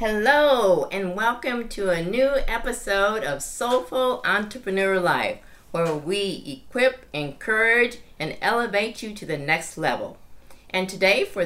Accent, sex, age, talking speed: American, female, 50-69, 130 wpm